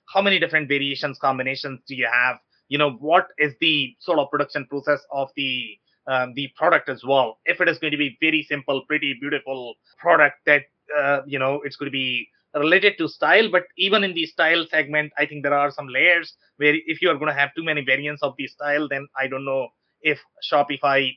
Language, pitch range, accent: English, 135-160 Hz, Indian